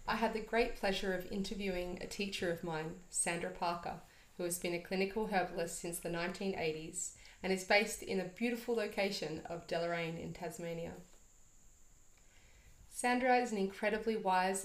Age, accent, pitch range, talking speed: 30-49, Australian, 175-200 Hz, 155 wpm